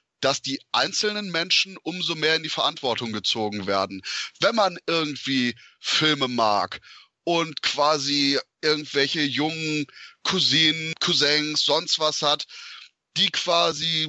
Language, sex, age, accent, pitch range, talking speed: German, male, 30-49, German, 135-175 Hz, 115 wpm